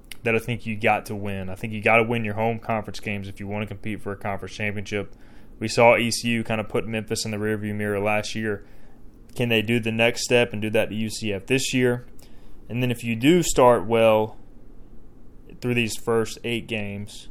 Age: 20-39